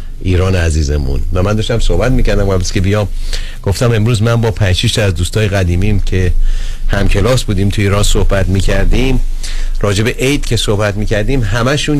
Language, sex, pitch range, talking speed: Persian, male, 100-130 Hz, 170 wpm